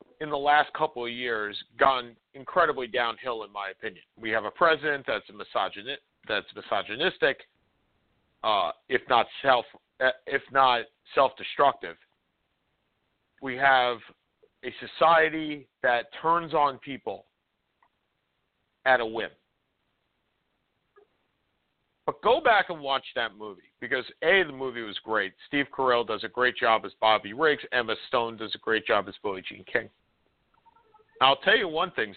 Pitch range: 120-155 Hz